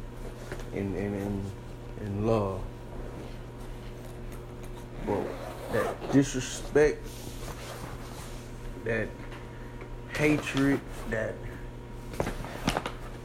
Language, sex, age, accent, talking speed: English, male, 30-49, American, 45 wpm